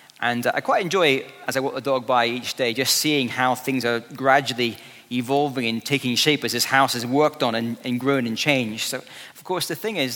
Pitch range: 125-145 Hz